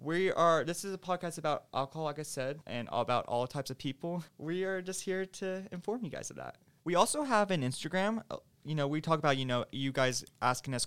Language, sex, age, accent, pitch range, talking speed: English, male, 20-39, American, 135-170 Hz, 245 wpm